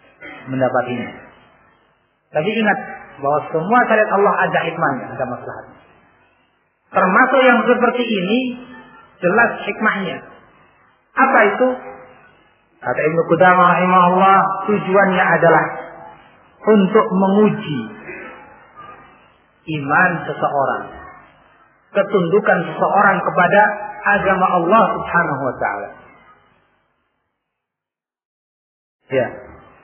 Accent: native